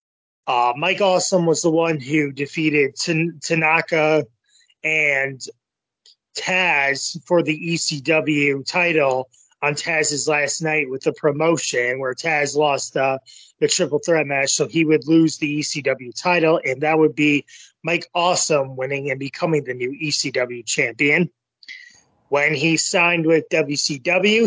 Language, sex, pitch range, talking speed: English, male, 140-170 Hz, 135 wpm